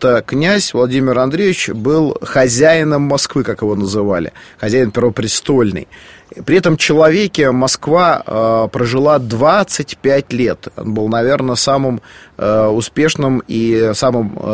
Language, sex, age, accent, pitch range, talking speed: Russian, male, 30-49, native, 110-140 Hz, 110 wpm